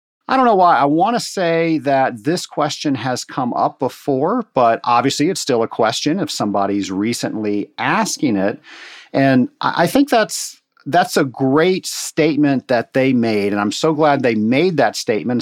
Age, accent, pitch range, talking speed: 50-69, American, 115-155 Hz, 170 wpm